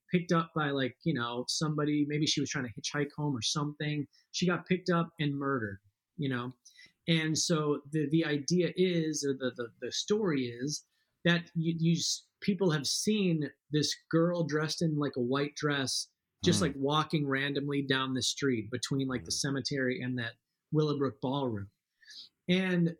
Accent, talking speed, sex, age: American, 170 wpm, male, 30-49